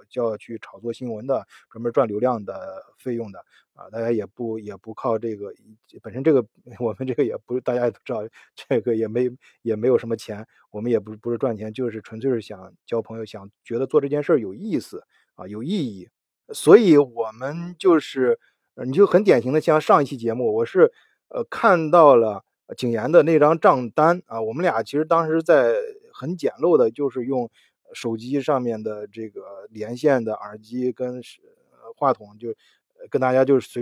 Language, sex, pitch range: Chinese, male, 115-165 Hz